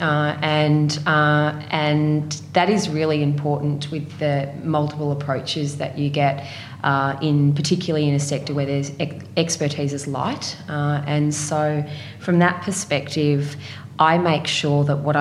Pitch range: 140-155 Hz